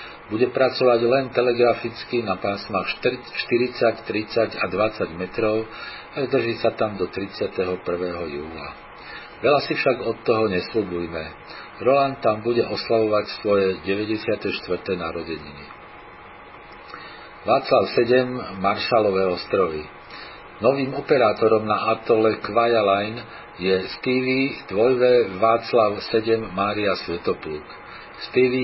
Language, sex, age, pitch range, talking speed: Slovak, male, 50-69, 100-120 Hz, 100 wpm